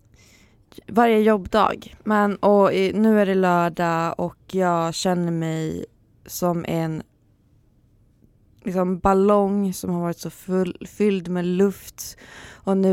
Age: 20-39